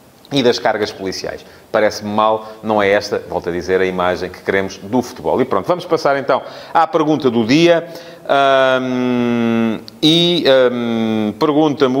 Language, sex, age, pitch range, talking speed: English, male, 30-49, 110-140 Hz, 145 wpm